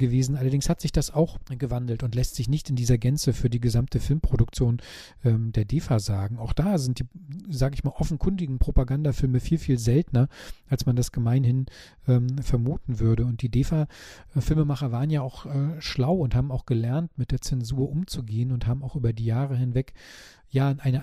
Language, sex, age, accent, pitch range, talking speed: German, male, 40-59, German, 120-145 Hz, 190 wpm